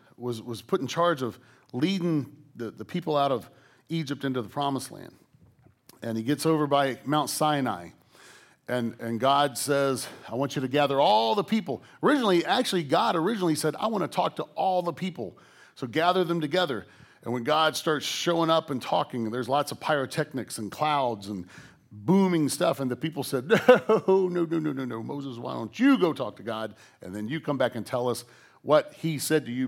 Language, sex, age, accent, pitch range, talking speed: English, male, 40-59, American, 125-165 Hz, 205 wpm